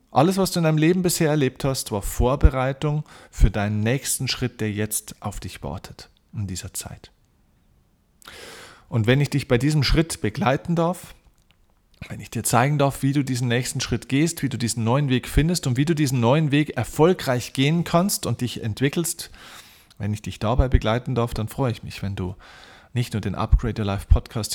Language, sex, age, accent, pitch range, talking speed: German, male, 40-59, German, 110-150 Hz, 195 wpm